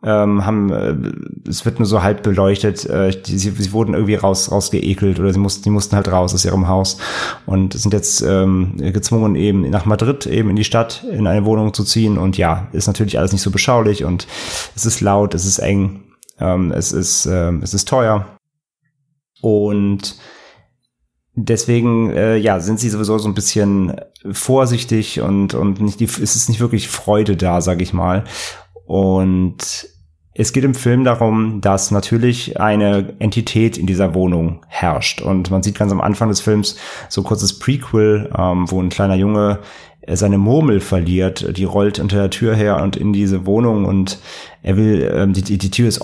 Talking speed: 180 wpm